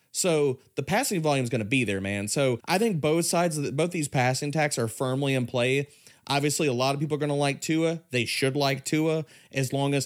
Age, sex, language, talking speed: 30-49, male, English, 250 wpm